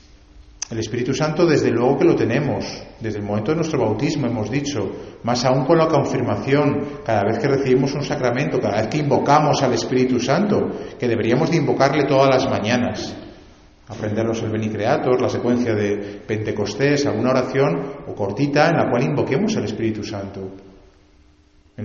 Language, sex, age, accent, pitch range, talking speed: Spanish, male, 40-59, Spanish, 105-140 Hz, 165 wpm